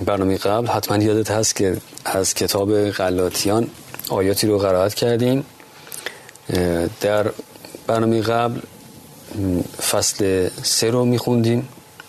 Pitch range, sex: 105-125 Hz, male